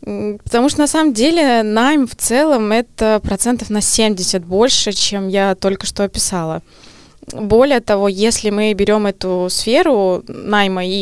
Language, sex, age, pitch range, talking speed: Russian, female, 20-39, 180-215 Hz, 145 wpm